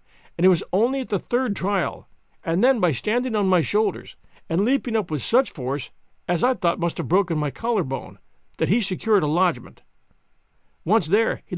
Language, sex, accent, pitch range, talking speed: English, male, American, 160-205 Hz, 190 wpm